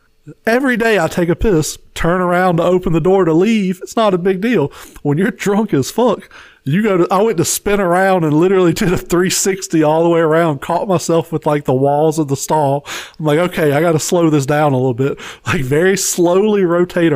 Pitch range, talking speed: 140-180 Hz, 225 wpm